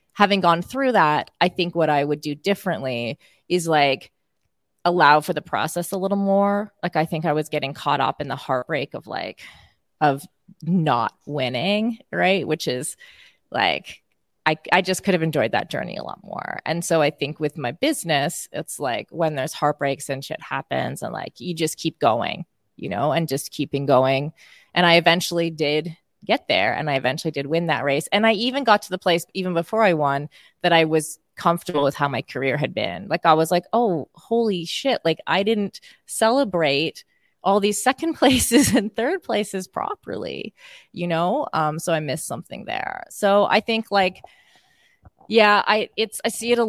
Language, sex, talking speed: English, female, 195 wpm